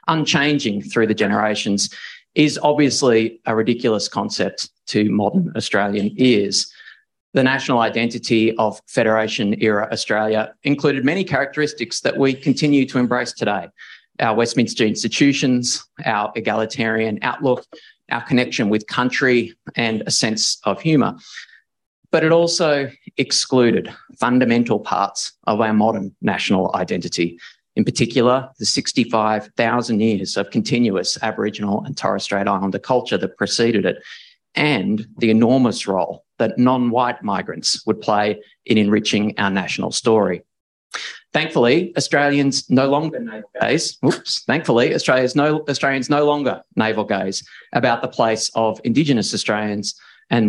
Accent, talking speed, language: Australian, 125 wpm, English